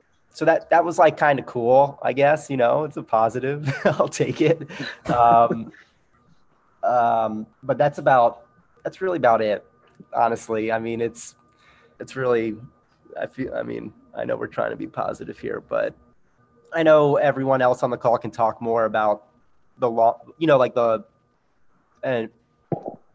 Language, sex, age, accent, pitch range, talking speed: English, male, 20-39, American, 105-125 Hz, 165 wpm